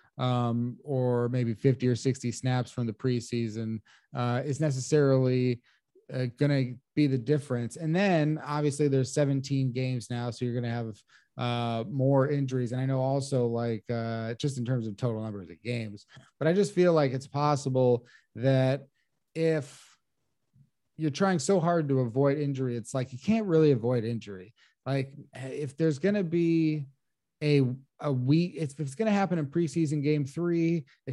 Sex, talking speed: male, 175 wpm